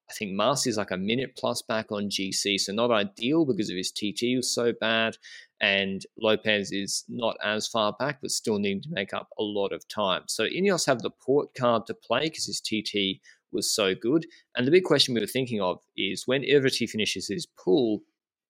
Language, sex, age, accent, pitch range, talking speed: English, male, 20-39, Australian, 100-120 Hz, 215 wpm